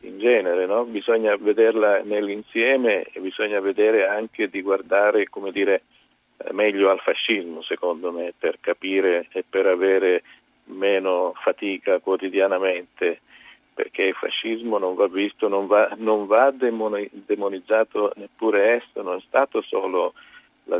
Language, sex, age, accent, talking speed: Italian, male, 50-69, native, 130 wpm